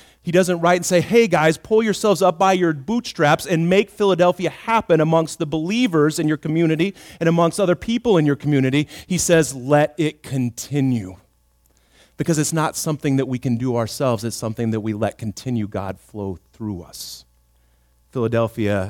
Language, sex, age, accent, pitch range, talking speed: English, male, 30-49, American, 125-200 Hz, 175 wpm